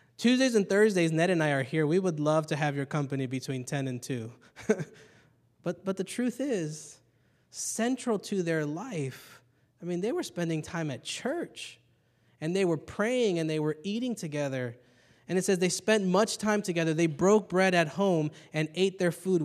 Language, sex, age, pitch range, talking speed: English, male, 20-39, 140-185 Hz, 190 wpm